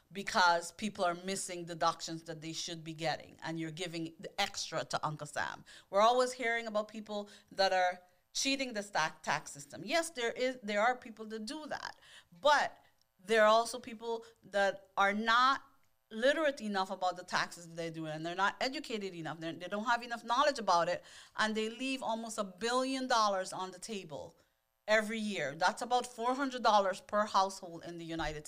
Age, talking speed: 40-59, 190 wpm